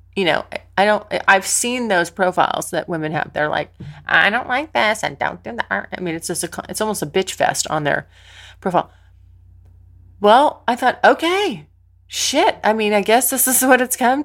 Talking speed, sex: 200 wpm, female